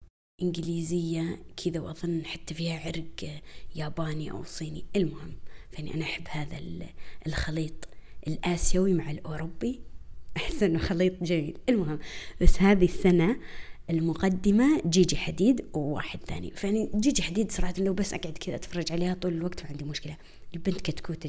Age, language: 20-39, Arabic